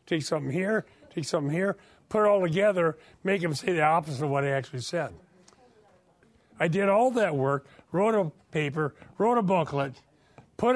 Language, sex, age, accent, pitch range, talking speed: English, male, 50-69, American, 150-210 Hz, 180 wpm